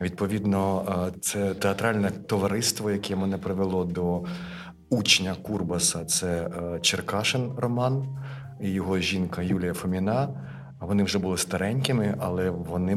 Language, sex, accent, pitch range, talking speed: Ukrainian, male, native, 90-105 Hz, 110 wpm